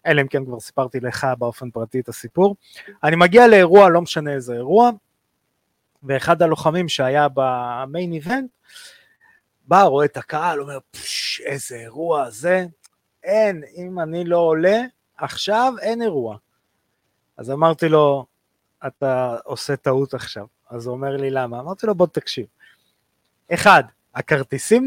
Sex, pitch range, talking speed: male, 135-200 Hz, 140 wpm